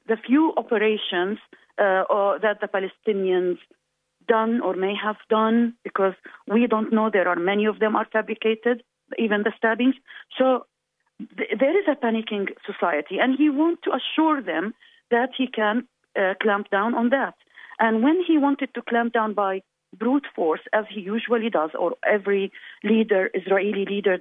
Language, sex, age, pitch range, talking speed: English, female, 40-59, 195-260 Hz, 165 wpm